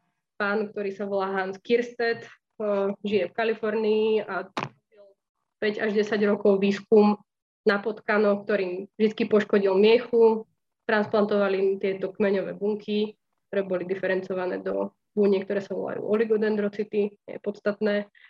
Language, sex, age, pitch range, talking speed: Slovak, female, 20-39, 195-215 Hz, 120 wpm